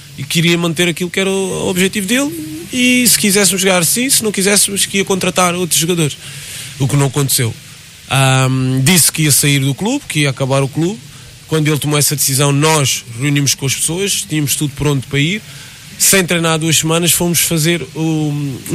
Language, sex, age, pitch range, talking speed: Portuguese, male, 20-39, 130-160 Hz, 190 wpm